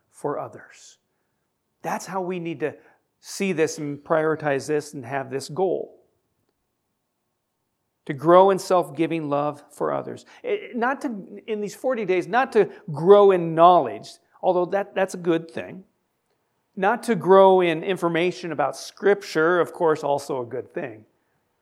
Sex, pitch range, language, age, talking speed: male, 145-190 Hz, English, 50-69, 150 wpm